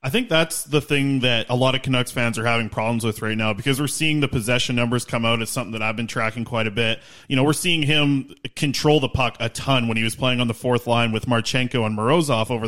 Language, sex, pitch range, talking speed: English, male, 120-150 Hz, 270 wpm